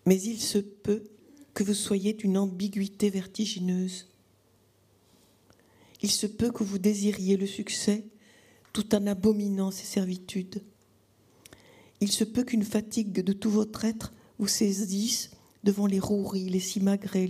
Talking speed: 135 wpm